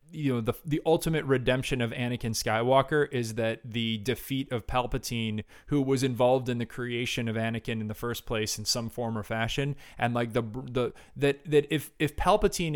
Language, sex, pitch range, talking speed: English, male, 120-140 Hz, 195 wpm